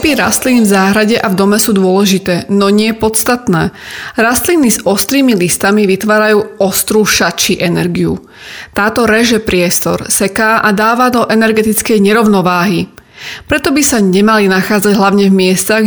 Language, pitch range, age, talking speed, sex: Slovak, 195-225 Hz, 30-49, 140 wpm, female